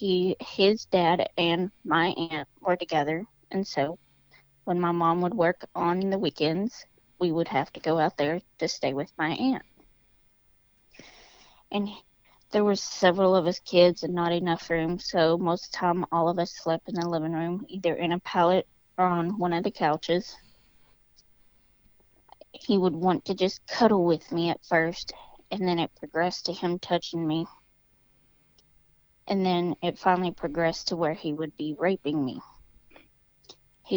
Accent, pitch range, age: American, 165-185 Hz, 20-39